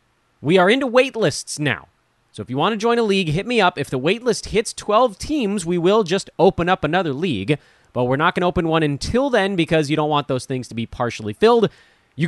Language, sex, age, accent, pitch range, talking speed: English, male, 30-49, American, 125-195 Hz, 250 wpm